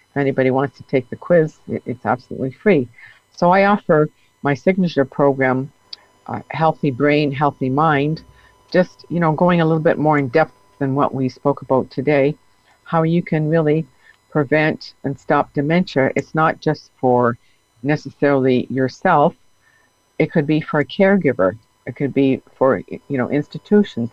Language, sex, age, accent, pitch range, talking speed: English, female, 50-69, American, 130-155 Hz, 155 wpm